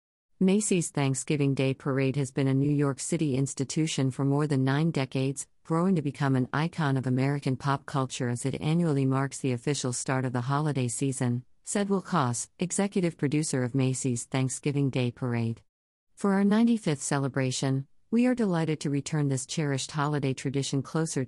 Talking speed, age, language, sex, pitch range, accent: 170 wpm, 50-69, English, female, 130-150 Hz, American